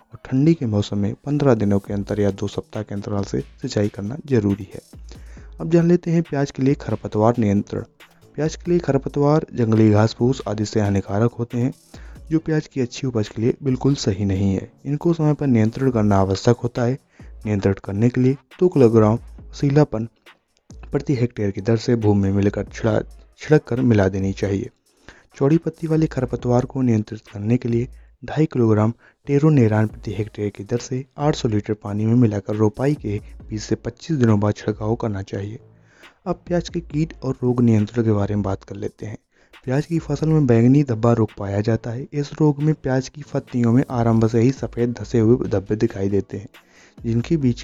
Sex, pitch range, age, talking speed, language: male, 105-135 Hz, 20-39, 195 wpm, Hindi